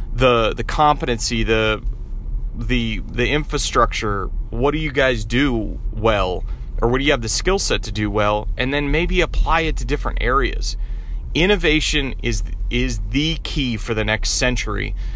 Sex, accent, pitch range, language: male, American, 110-140 Hz, English